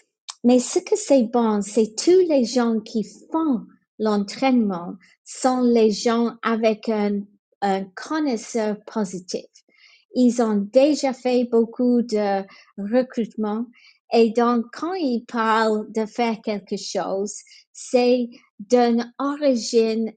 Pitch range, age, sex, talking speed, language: 210-255 Hz, 30-49, female, 115 wpm, English